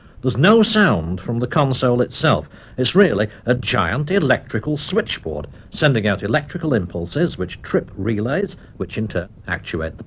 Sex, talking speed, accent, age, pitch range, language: male, 150 wpm, British, 60-79, 105-160 Hz, English